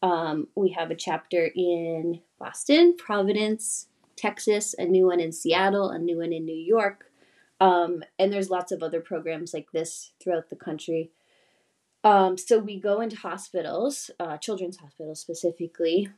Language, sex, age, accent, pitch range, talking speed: English, female, 20-39, American, 165-195 Hz, 155 wpm